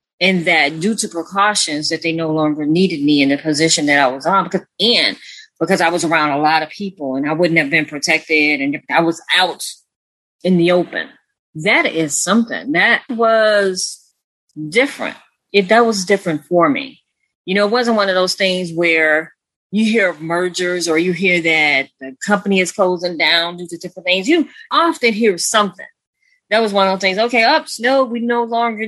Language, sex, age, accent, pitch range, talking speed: English, female, 30-49, American, 165-220 Hz, 195 wpm